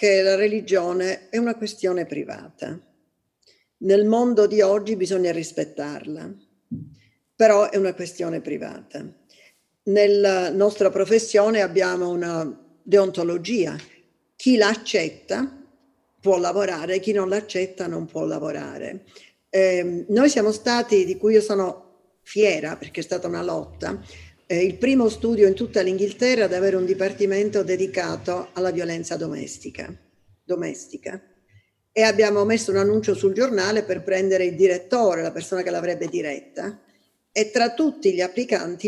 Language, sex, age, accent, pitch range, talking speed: Italian, female, 50-69, native, 185-215 Hz, 130 wpm